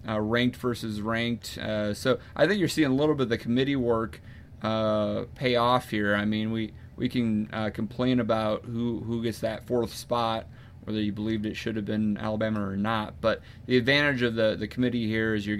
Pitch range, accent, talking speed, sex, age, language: 110-125 Hz, American, 210 wpm, male, 30-49, English